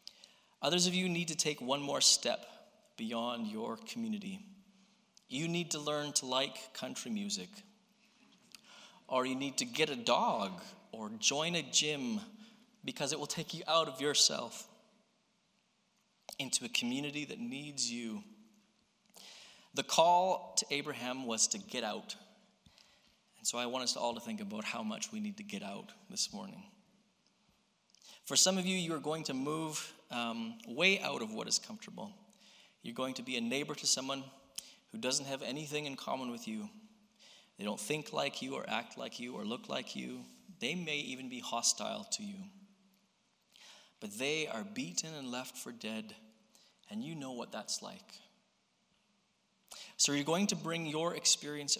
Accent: American